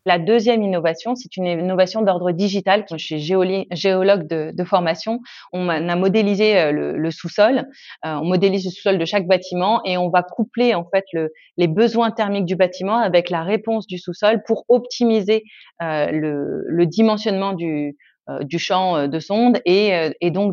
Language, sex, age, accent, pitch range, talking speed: French, female, 30-49, French, 165-210 Hz, 165 wpm